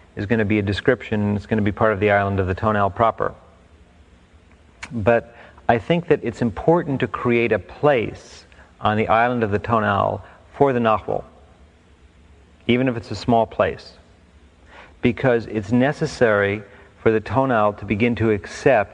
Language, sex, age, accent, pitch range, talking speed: English, male, 40-59, American, 85-115 Hz, 170 wpm